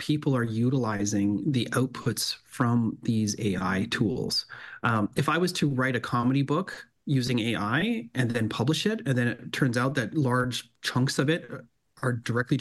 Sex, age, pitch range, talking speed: male, 30-49, 115-140 Hz, 170 wpm